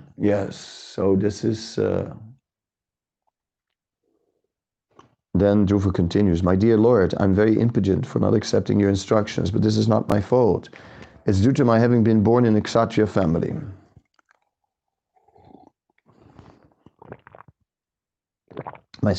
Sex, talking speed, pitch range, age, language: male, 115 wpm, 95-115 Hz, 50-69, English